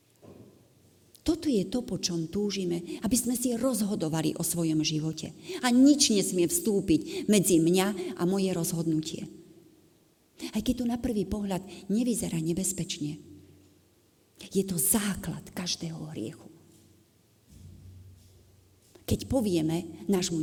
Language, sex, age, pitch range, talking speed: Slovak, female, 30-49, 155-205 Hz, 110 wpm